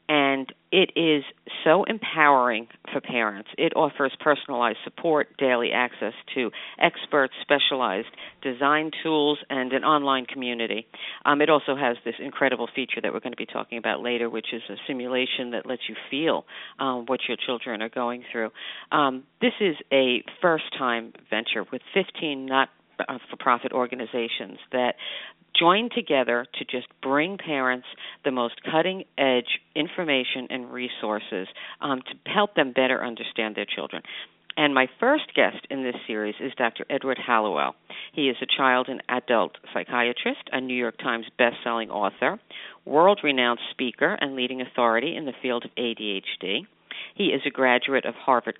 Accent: American